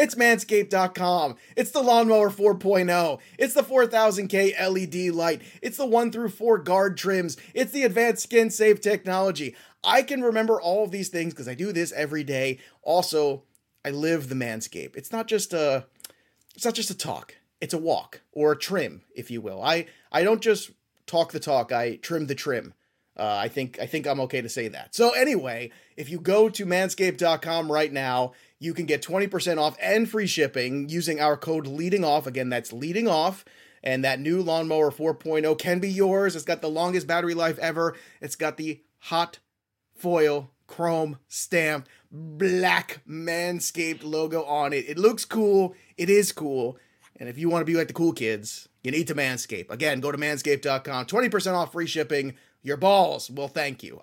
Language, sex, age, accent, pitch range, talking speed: English, male, 30-49, American, 145-195 Hz, 185 wpm